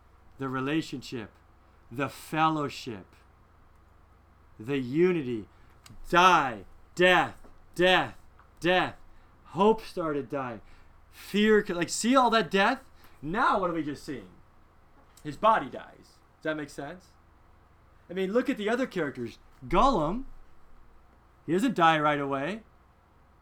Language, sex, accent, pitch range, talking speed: English, male, American, 115-190 Hz, 115 wpm